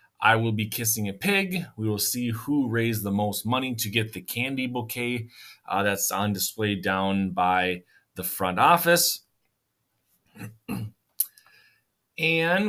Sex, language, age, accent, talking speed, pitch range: male, English, 30-49, American, 135 wpm, 105-140 Hz